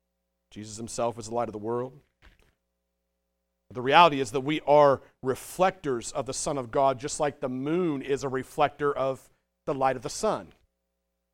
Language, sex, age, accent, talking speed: English, male, 40-59, American, 175 wpm